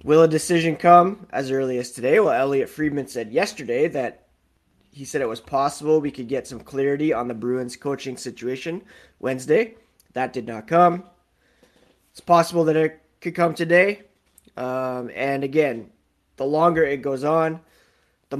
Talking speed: 165 wpm